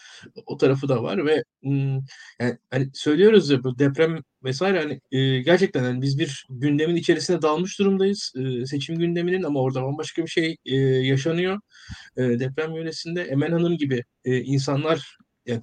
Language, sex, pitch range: Turkish, male, 130-165 Hz